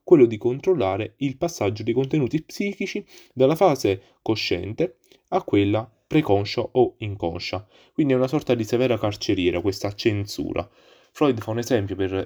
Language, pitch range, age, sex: Italian, 100-130 Hz, 20-39, male